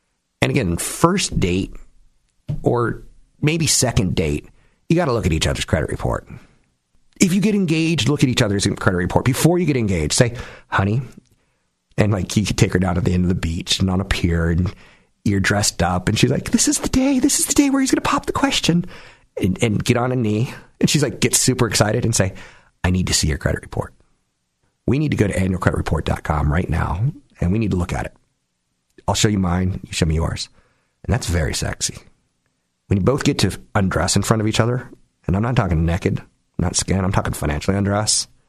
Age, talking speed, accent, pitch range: 40-59, 220 wpm, American, 85-120 Hz